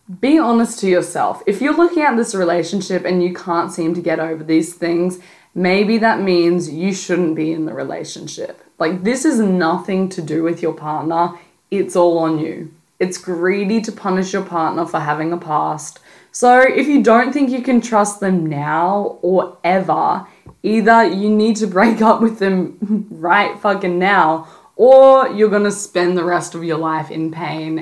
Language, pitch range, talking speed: English, 165-220 Hz, 185 wpm